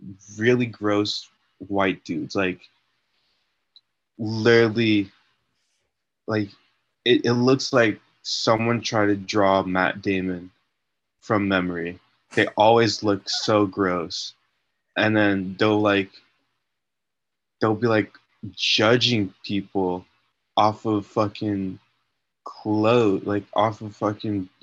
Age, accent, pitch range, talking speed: 20-39, American, 95-110 Hz, 100 wpm